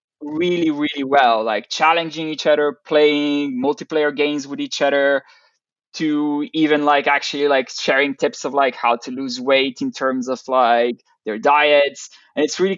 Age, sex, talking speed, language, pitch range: 20-39, male, 165 wpm, English, 130-170 Hz